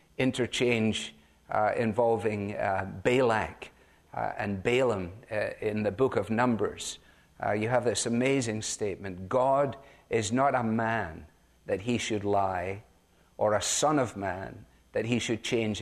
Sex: male